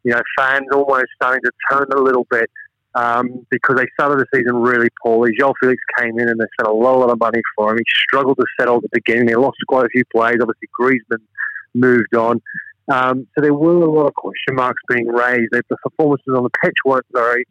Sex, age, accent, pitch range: male, 30-49, Australian, 120-140 Hz